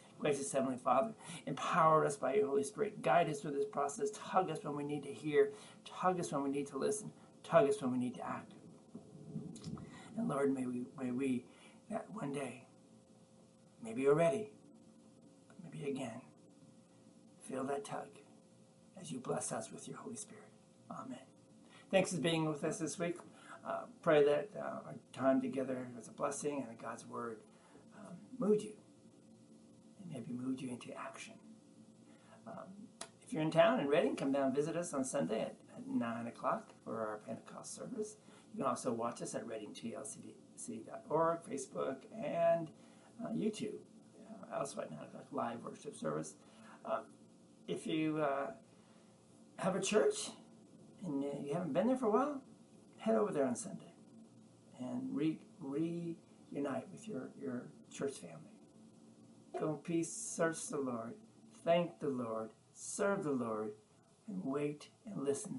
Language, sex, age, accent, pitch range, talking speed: English, male, 60-79, American, 135-190 Hz, 160 wpm